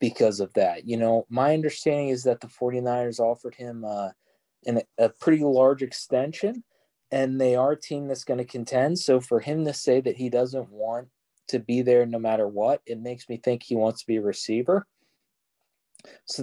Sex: male